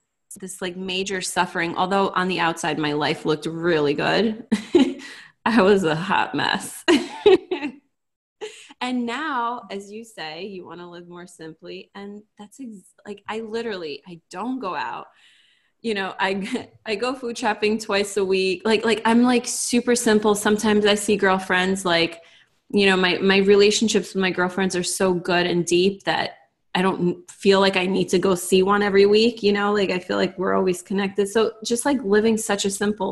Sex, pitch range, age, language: female, 175-215 Hz, 20-39, English